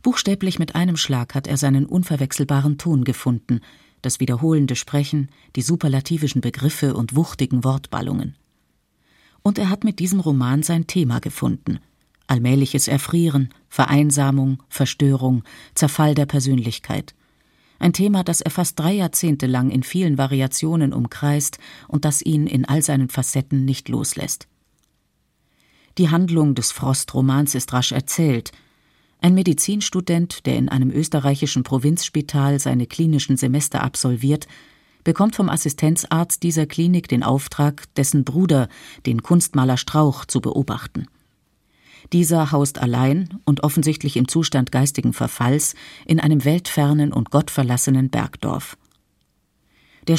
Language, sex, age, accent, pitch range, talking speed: German, female, 40-59, German, 135-160 Hz, 125 wpm